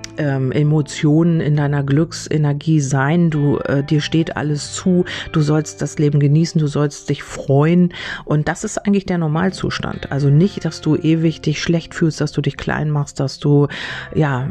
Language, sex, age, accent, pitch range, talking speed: German, female, 40-59, German, 140-160 Hz, 180 wpm